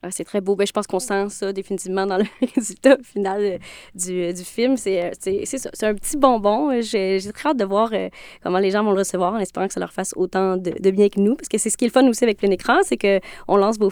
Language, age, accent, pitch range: French, 20-39, Canadian, 190-235 Hz